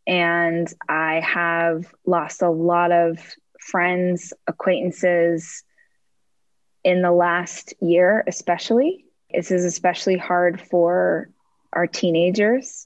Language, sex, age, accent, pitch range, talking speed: English, female, 20-39, American, 170-185 Hz, 100 wpm